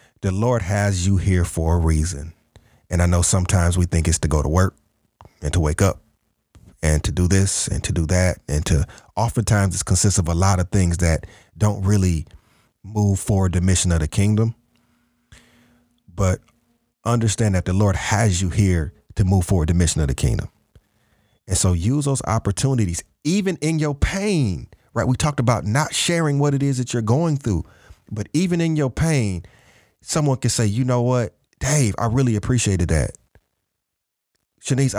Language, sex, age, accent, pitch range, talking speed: English, male, 40-59, American, 90-120 Hz, 180 wpm